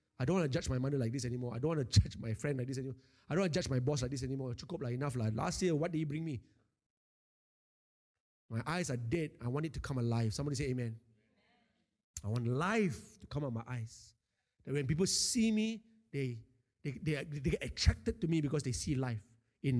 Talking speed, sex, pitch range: 235 wpm, male, 125-210 Hz